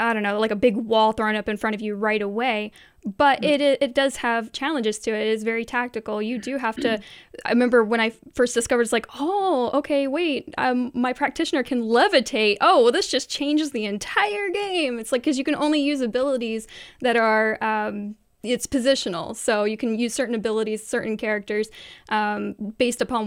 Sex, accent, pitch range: female, American, 220-270 Hz